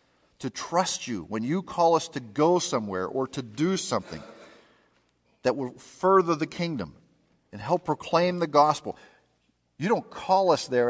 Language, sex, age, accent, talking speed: English, male, 50-69, American, 160 wpm